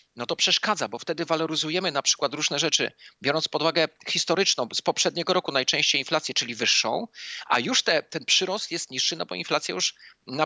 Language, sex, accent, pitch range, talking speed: Polish, male, native, 145-180 Hz, 185 wpm